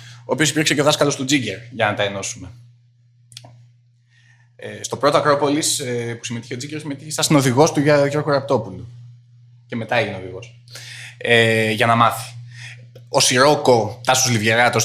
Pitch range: 110-125 Hz